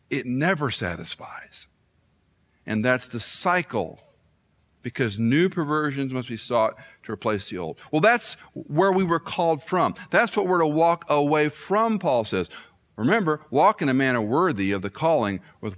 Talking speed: 165 wpm